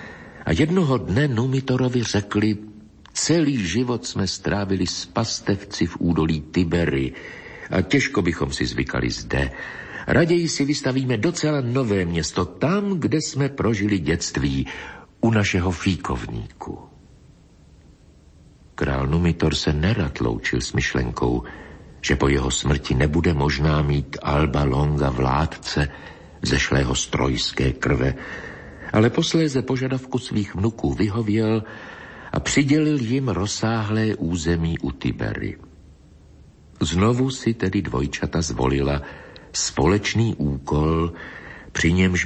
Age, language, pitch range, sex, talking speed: 60-79, Slovak, 75-125 Hz, male, 110 wpm